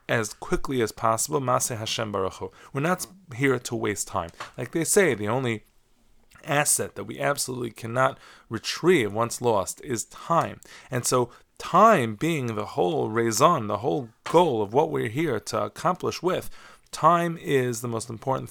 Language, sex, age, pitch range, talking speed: English, male, 20-39, 105-130 Hz, 160 wpm